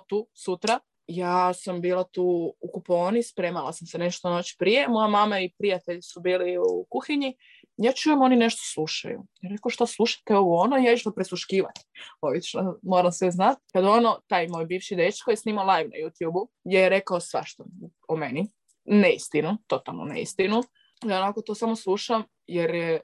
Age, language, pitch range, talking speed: 20-39, Croatian, 165-215 Hz, 180 wpm